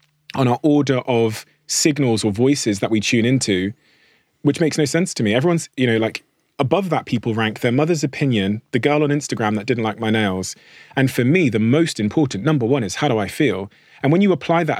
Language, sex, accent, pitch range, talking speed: English, male, British, 110-145 Hz, 225 wpm